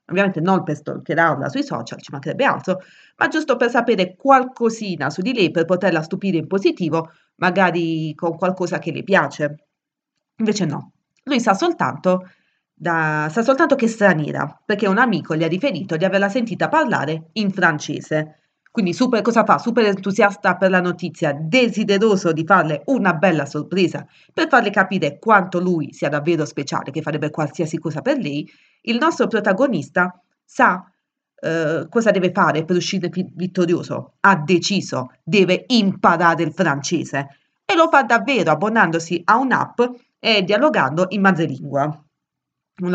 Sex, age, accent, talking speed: female, 30-49, native, 150 wpm